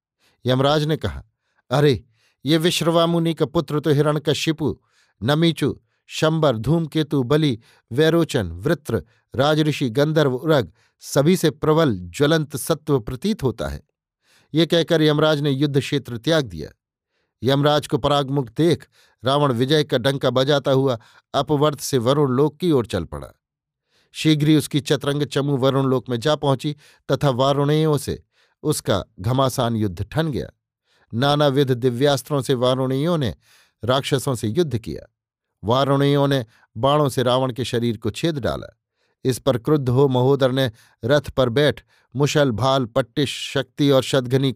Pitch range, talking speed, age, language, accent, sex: 125-150 Hz, 140 wpm, 50-69, Hindi, native, male